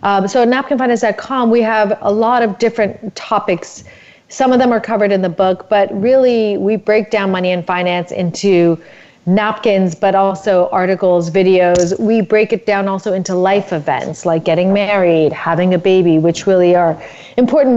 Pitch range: 175-210 Hz